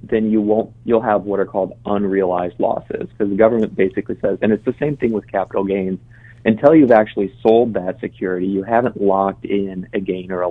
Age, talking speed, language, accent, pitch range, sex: 30-49, 210 wpm, English, American, 95-115 Hz, male